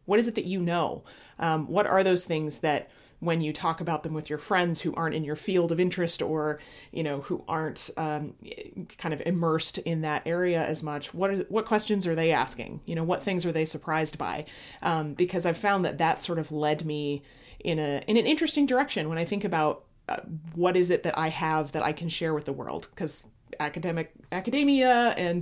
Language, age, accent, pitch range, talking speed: English, 30-49, American, 155-190 Hz, 220 wpm